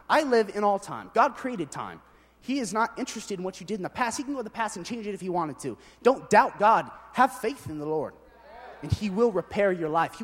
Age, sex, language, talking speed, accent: 30-49, male, English, 275 wpm, American